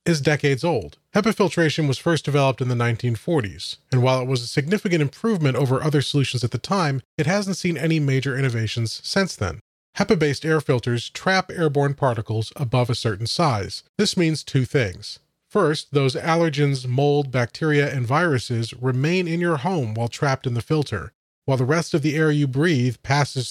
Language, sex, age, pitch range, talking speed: English, male, 30-49, 125-170 Hz, 180 wpm